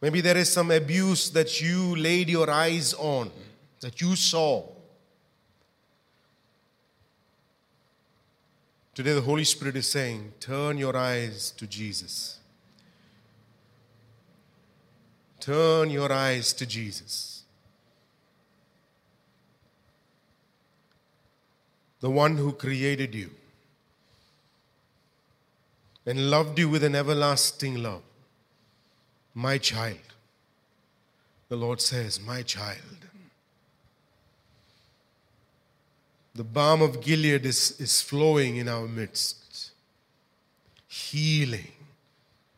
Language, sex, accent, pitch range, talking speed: English, male, Indian, 120-150 Hz, 85 wpm